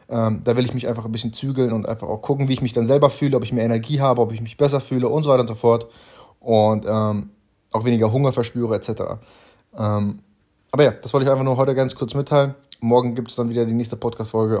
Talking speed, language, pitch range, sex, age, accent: 250 wpm, German, 110-135 Hz, male, 30-49, German